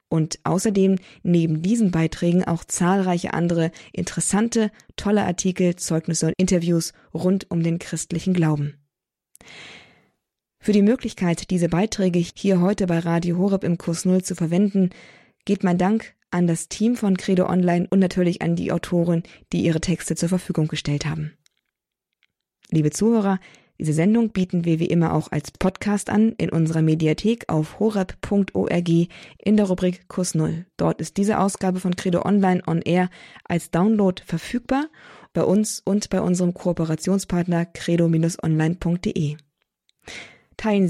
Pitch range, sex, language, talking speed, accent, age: 165-195 Hz, female, German, 140 wpm, German, 20-39